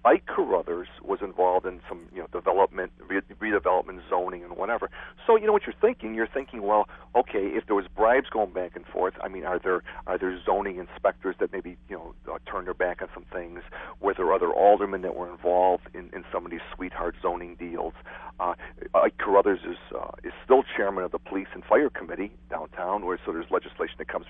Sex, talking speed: male, 215 wpm